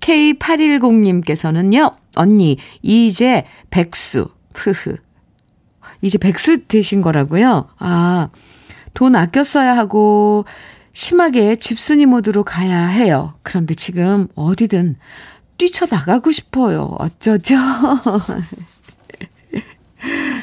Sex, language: female, Korean